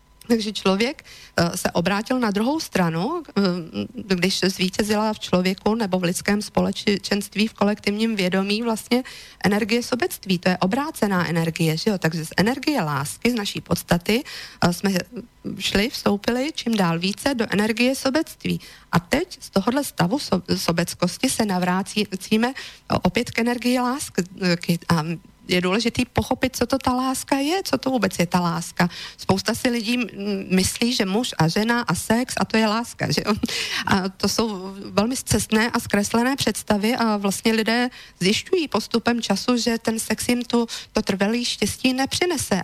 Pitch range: 190-240 Hz